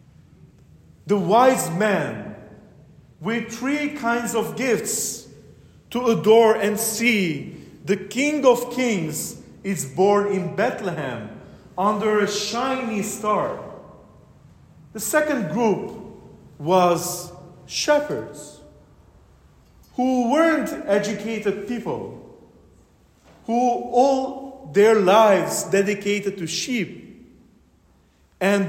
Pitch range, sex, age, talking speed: 160-235 Hz, male, 40-59, 85 wpm